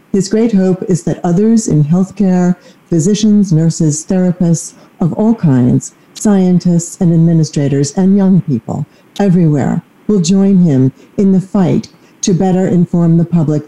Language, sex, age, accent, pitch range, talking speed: English, female, 50-69, American, 150-190 Hz, 140 wpm